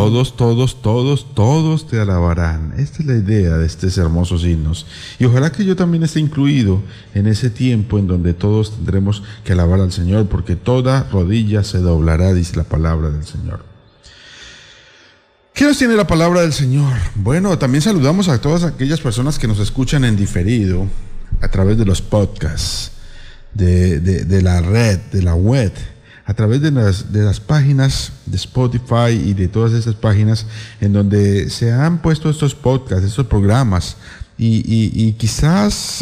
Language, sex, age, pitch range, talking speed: Spanish, male, 50-69, 95-140 Hz, 165 wpm